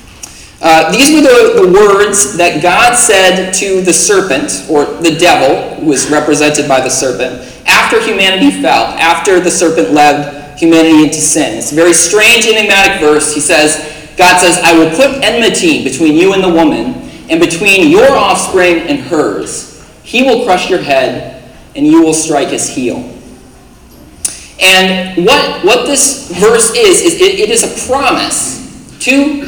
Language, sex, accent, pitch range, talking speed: English, male, American, 160-250 Hz, 165 wpm